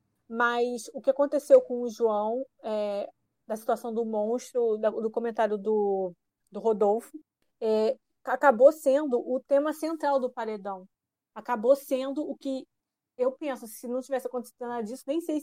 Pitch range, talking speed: 225-270 Hz, 155 wpm